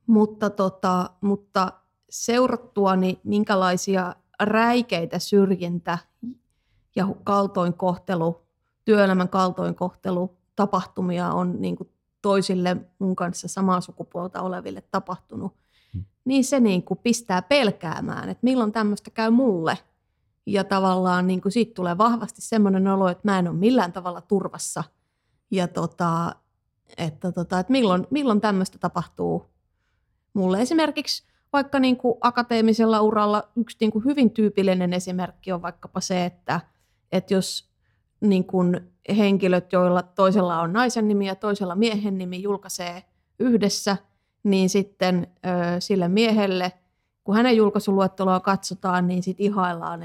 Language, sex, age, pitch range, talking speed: Finnish, female, 30-49, 180-210 Hz, 120 wpm